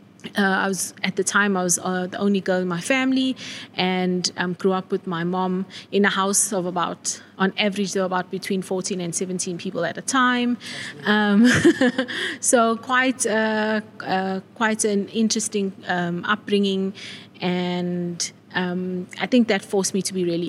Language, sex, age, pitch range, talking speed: English, female, 20-39, 180-205 Hz, 170 wpm